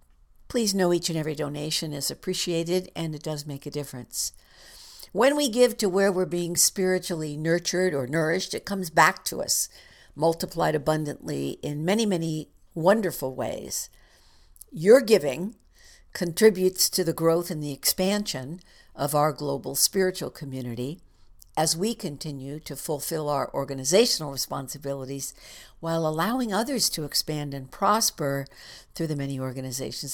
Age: 60-79